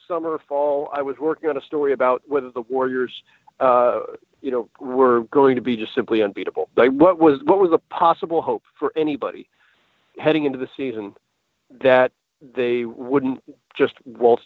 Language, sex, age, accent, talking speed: English, male, 40-59, American, 170 wpm